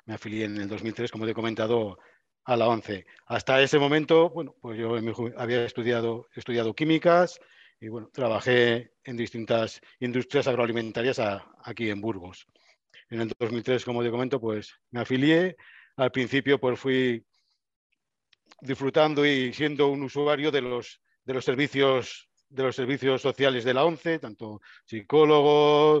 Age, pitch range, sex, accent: 50-69, 115-145 Hz, male, Spanish